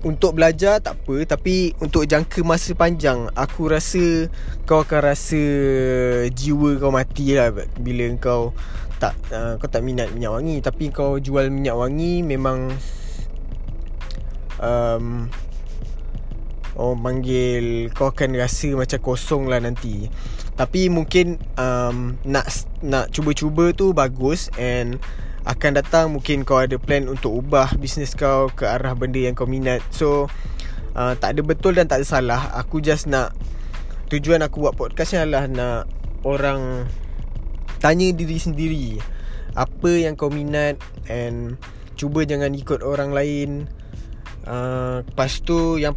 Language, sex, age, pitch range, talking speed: Malay, male, 20-39, 120-150 Hz, 135 wpm